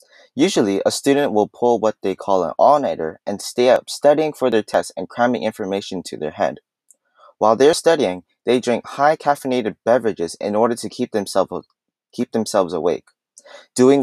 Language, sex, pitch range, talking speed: English, male, 105-135 Hz, 165 wpm